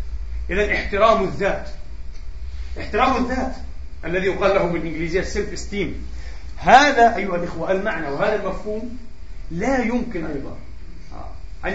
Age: 40-59